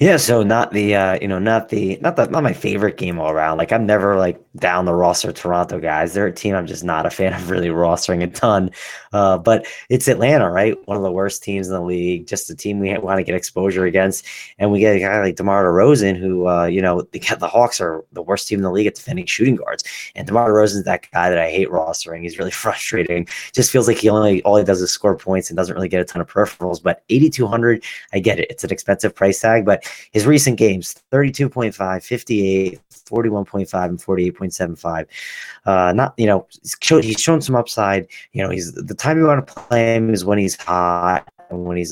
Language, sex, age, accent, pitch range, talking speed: English, male, 20-39, American, 90-110 Hz, 235 wpm